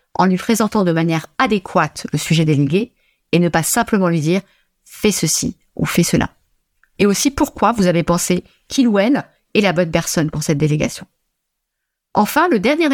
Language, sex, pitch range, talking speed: French, female, 160-210 Hz, 200 wpm